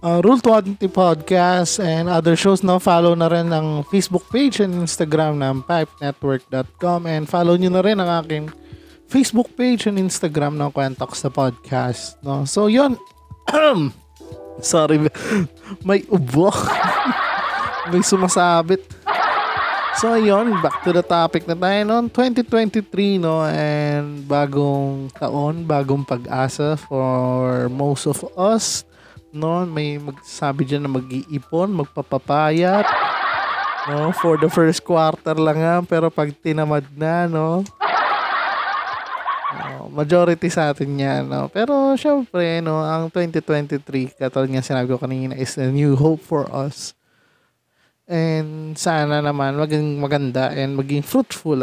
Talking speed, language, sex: 130 wpm, Filipino, male